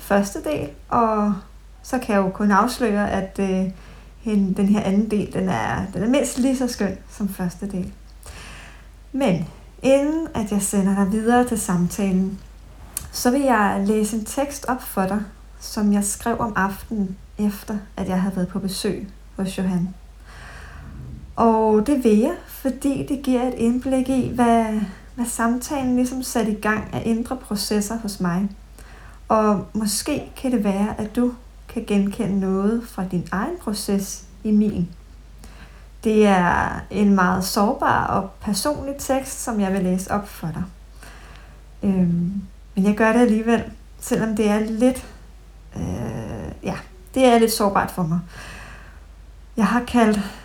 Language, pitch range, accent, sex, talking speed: Danish, 190-235 Hz, native, female, 155 wpm